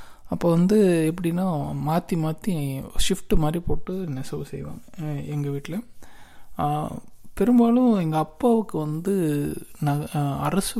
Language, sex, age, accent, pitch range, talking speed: Tamil, male, 20-39, native, 145-175 Hz, 100 wpm